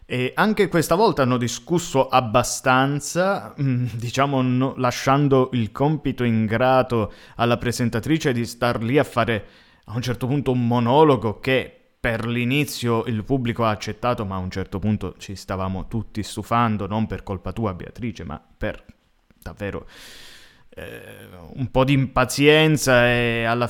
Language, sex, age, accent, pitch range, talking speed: Italian, male, 20-39, native, 110-130 Hz, 140 wpm